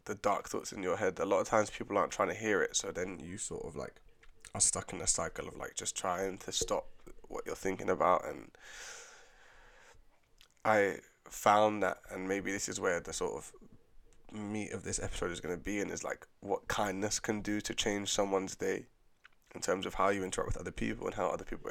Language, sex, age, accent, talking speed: English, male, 20-39, British, 225 wpm